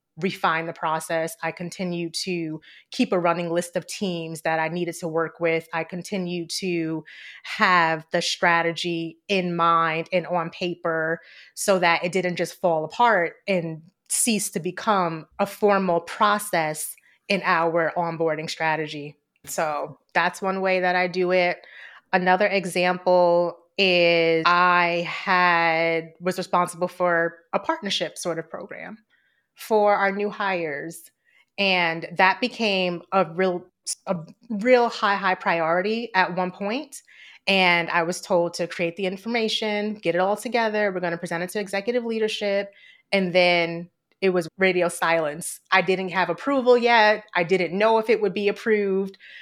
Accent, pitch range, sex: American, 170-200 Hz, female